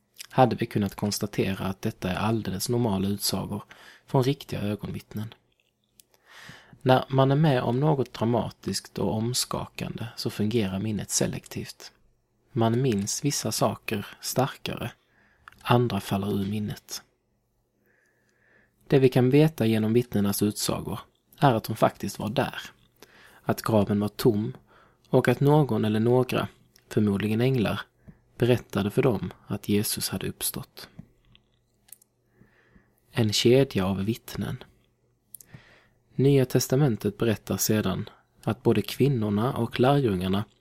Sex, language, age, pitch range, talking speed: male, Swedish, 20-39, 105-125 Hz, 115 wpm